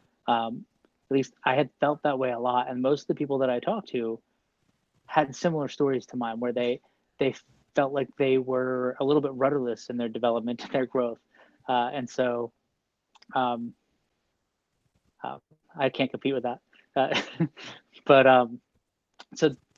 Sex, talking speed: male, 165 wpm